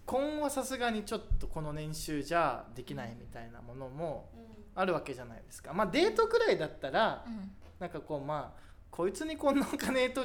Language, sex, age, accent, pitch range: Japanese, male, 20-39, native, 135-225 Hz